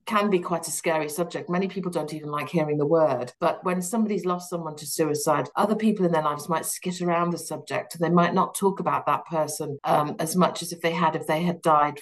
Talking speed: 245 wpm